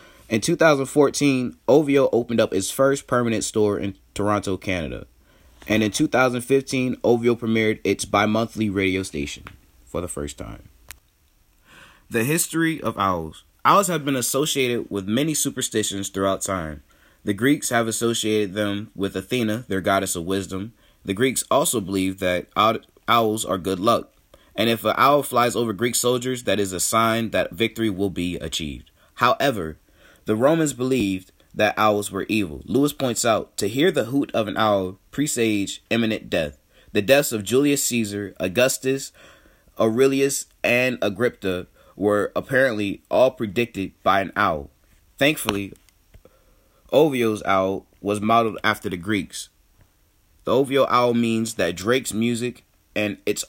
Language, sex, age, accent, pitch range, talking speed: English, male, 20-39, American, 95-125 Hz, 145 wpm